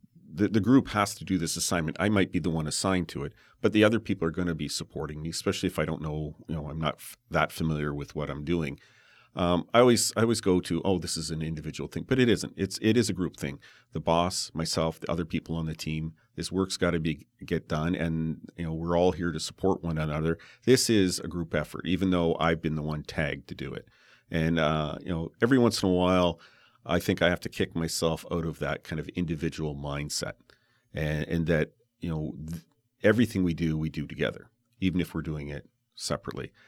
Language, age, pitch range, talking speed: English, 40-59, 80-95 Hz, 235 wpm